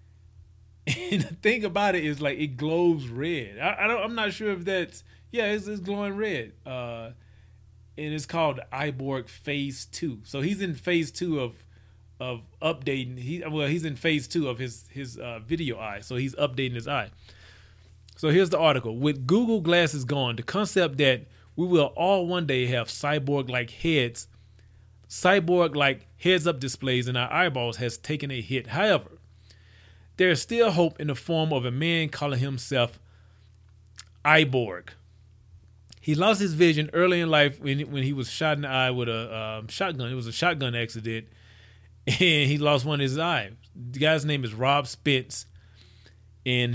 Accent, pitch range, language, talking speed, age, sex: American, 105-155 Hz, English, 180 wpm, 30-49, male